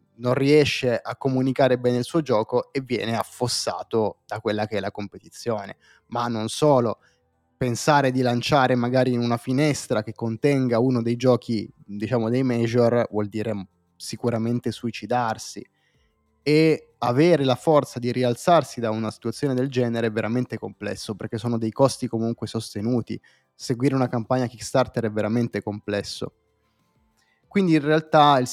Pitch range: 115-135 Hz